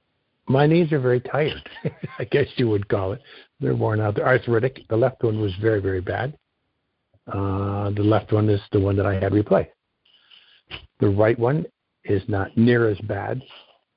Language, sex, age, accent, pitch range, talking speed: English, male, 60-79, American, 100-120 Hz, 180 wpm